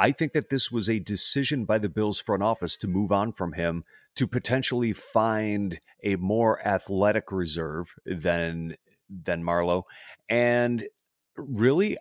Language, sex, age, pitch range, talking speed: English, male, 30-49, 95-125 Hz, 145 wpm